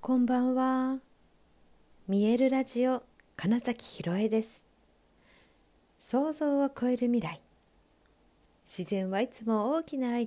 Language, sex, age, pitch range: Japanese, female, 50-69, 165-235 Hz